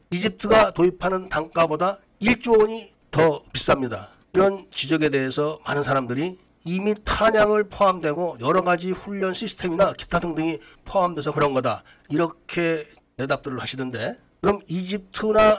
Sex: male